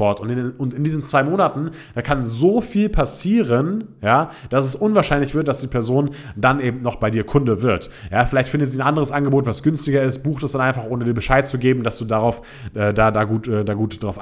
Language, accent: German, German